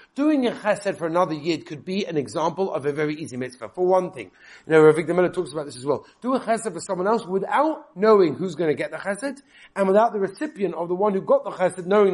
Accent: British